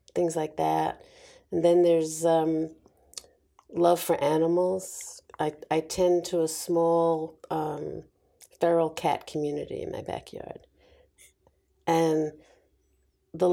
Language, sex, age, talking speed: Finnish, female, 50-69, 110 wpm